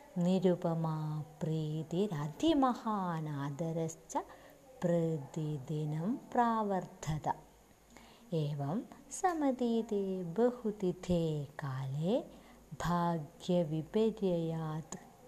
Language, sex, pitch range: Malayalam, female, 160-230 Hz